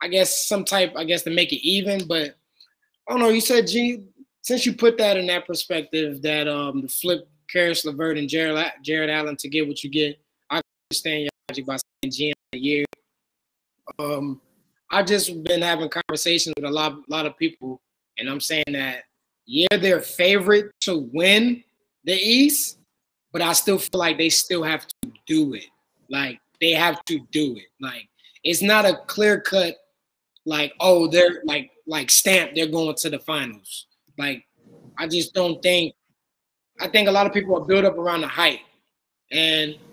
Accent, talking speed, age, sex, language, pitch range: American, 185 wpm, 20-39, male, English, 155-200 Hz